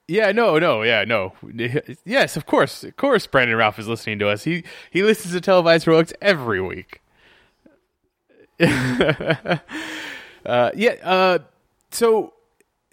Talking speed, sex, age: 130 wpm, male, 20-39